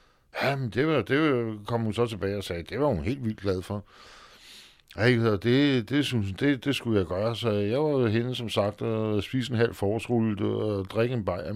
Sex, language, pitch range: male, Danish, 100-120 Hz